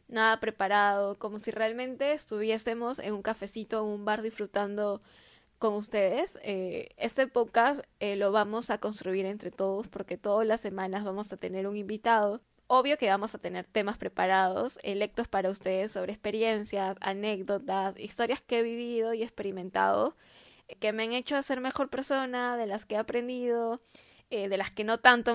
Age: 10-29